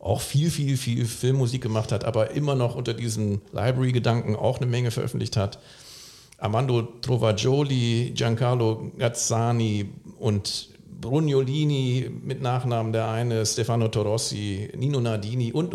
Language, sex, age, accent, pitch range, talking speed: German, male, 50-69, German, 115-135 Hz, 125 wpm